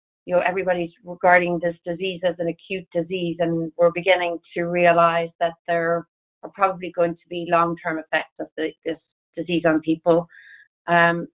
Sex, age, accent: female, 30-49, Irish